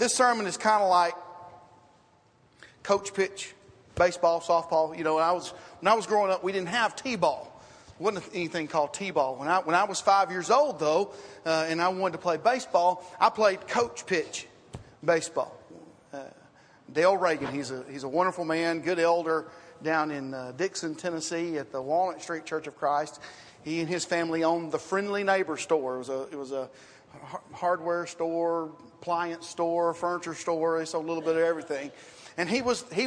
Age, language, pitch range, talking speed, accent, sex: 40-59, English, 155-200 Hz, 190 wpm, American, male